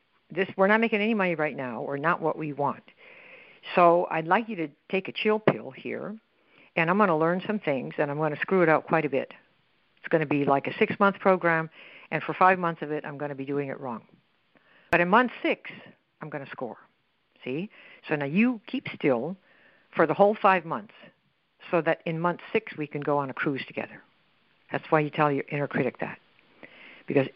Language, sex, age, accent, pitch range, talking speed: English, female, 60-79, American, 145-185 Hz, 220 wpm